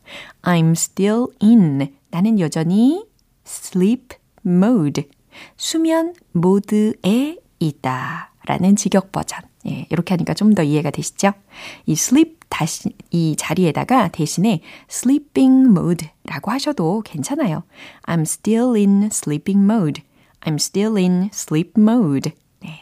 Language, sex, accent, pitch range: Korean, female, native, 160-225 Hz